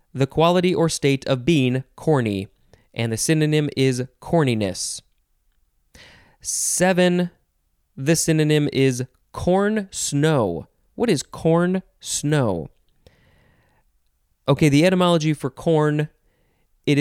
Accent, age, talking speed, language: American, 20-39, 100 wpm, English